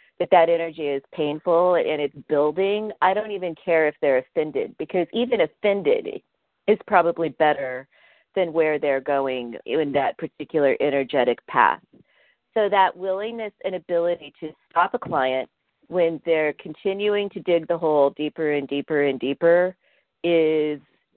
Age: 40-59